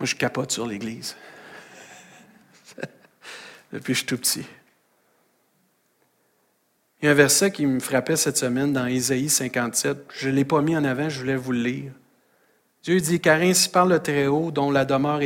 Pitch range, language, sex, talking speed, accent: 130-160 Hz, French, male, 180 wpm, Canadian